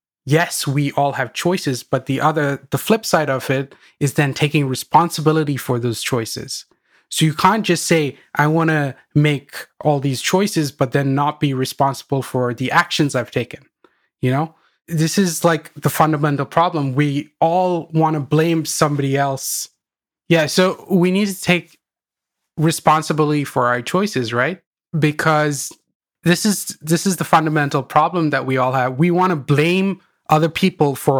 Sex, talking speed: male, 165 wpm